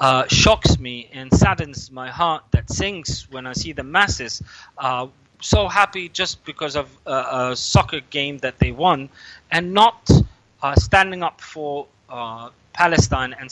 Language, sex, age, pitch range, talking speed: English, male, 30-49, 130-165 Hz, 160 wpm